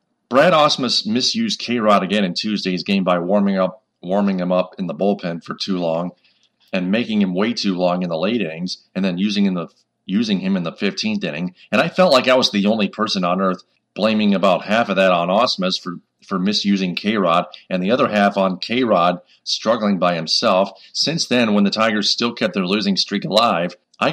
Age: 40-59